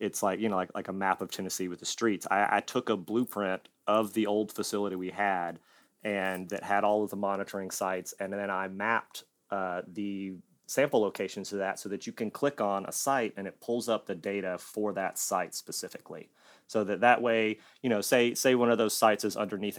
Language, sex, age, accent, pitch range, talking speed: English, male, 30-49, American, 95-110 Hz, 225 wpm